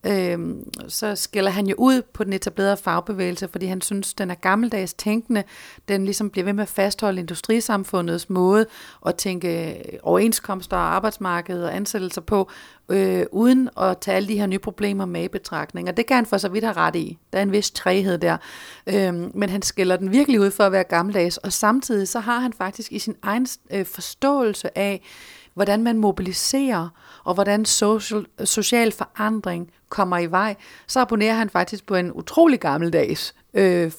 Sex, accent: female, native